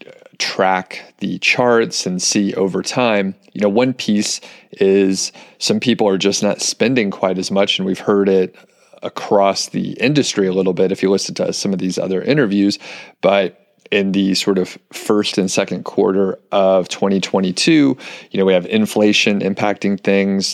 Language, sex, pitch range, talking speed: English, male, 95-100 Hz, 170 wpm